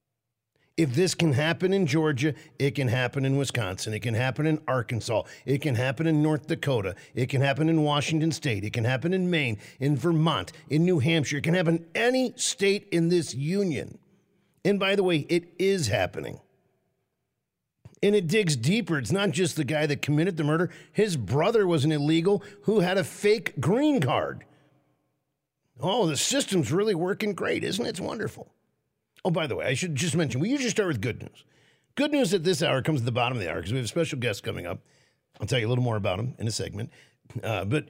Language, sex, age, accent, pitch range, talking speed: English, male, 50-69, American, 135-185 Hz, 215 wpm